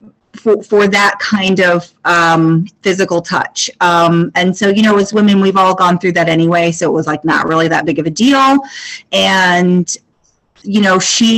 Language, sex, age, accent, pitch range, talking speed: English, female, 30-49, American, 185-220 Hz, 190 wpm